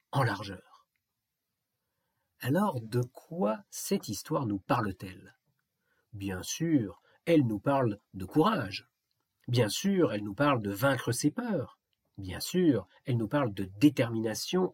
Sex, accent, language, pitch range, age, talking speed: male, French, French, 105-165 Hz, 50-69, 130 wpm